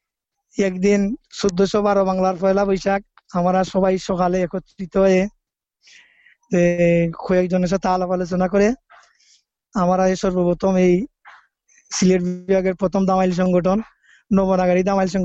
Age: 20-39